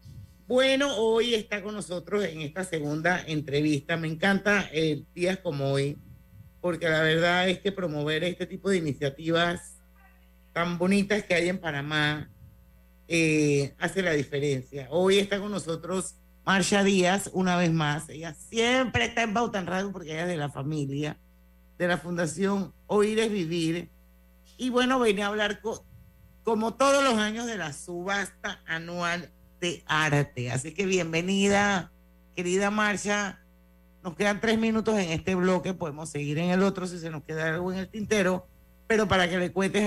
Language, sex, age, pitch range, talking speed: Spanish, male, 50-69, 150-200 Hz, 160 wpm